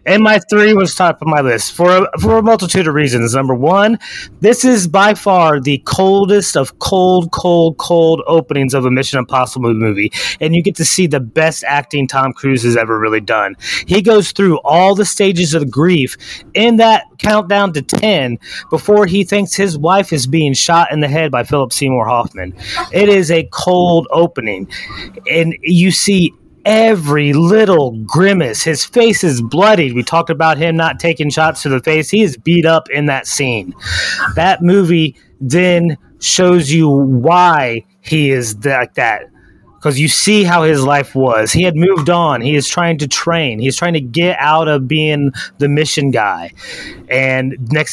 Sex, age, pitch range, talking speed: male, 30-49, 135-180 Hz, 185 wpm